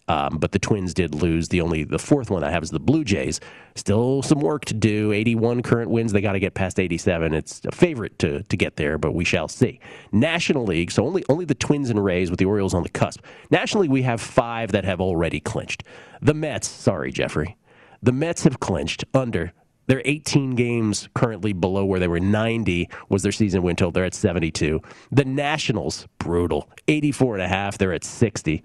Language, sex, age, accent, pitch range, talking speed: English, male, 40-59, American, 90-125 Hz, 215 wpm